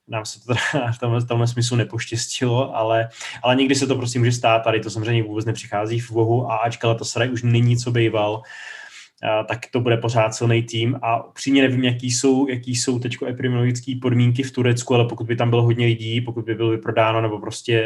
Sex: male